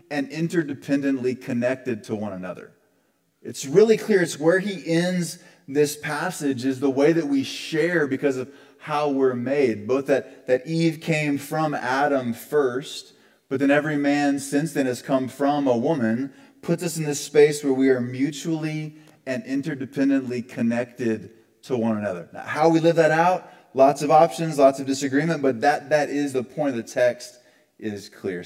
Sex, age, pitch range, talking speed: male, 30-49, 120-150 Hz, 175 wpm